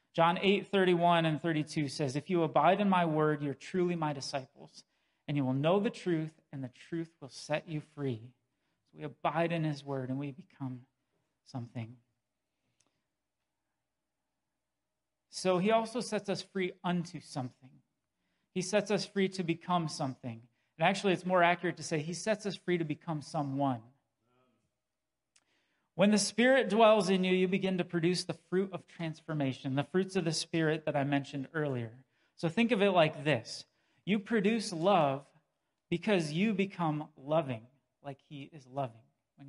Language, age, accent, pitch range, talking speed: English, 40-59, American, 140-185 Hz, 165 wpm